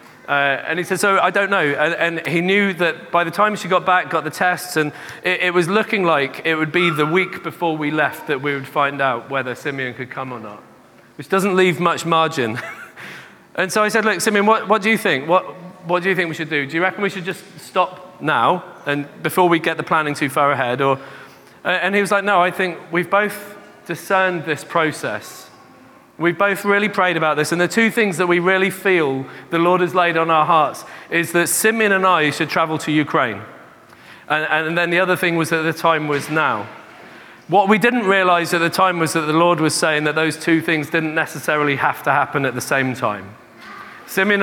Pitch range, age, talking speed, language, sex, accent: 155-185 Hz, 30-49, 230 wpm, English, male, British